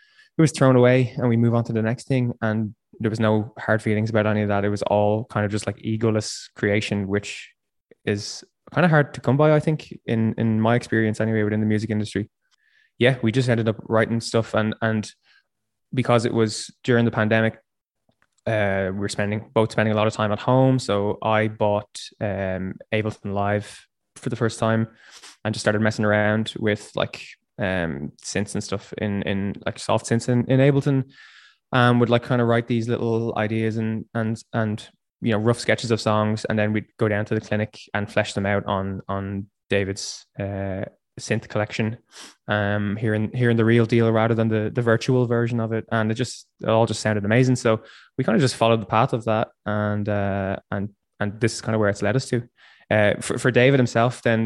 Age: 20-39